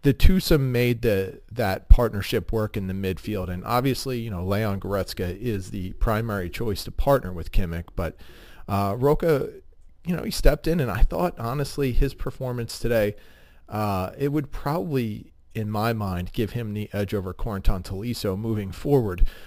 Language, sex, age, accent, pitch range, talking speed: English, male, 40-59, American, 100-125 Hz, 170 wpm